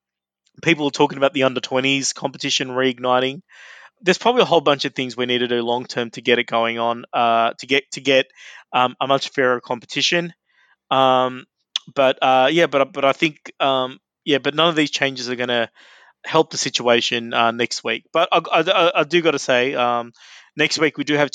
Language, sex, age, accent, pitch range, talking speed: English, male, 20-39, Australian, 125-140 Hz, 210 wpm